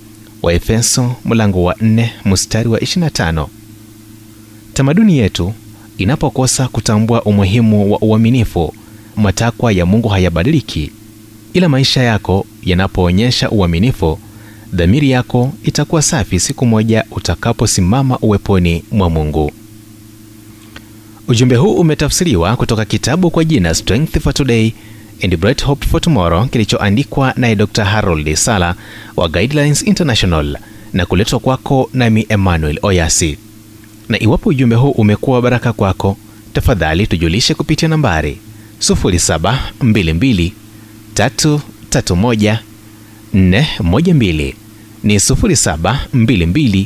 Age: 30-49